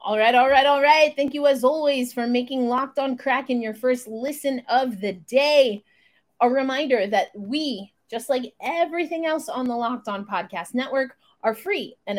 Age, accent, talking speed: 30-49, American, 190 wpm